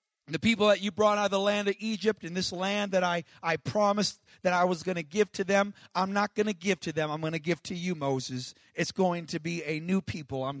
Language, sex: English, male